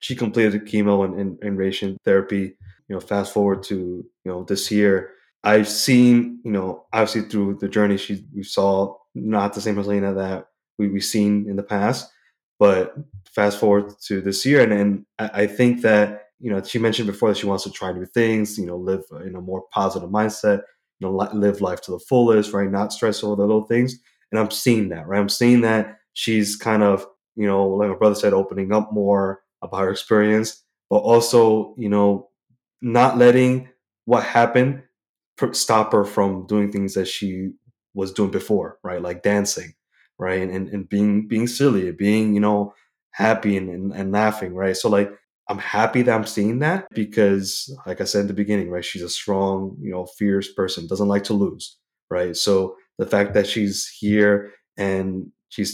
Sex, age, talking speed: male, 20-39, 195 wpm